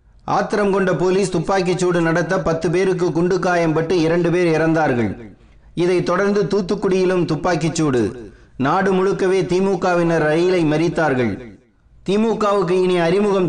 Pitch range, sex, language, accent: 160-185 Hz, male, Tamil, native